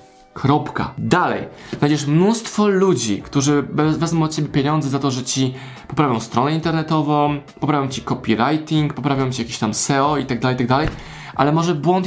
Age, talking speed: 20-39, 150 wpm